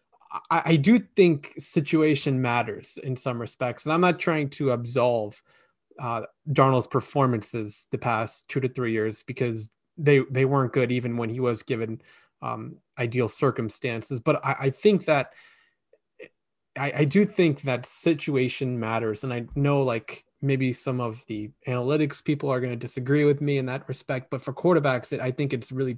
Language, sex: English, male